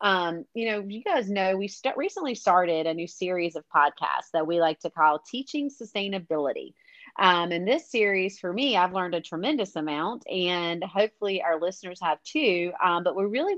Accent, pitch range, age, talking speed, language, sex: American, 170-215 Hz, 30-49, 185 wpm, English, female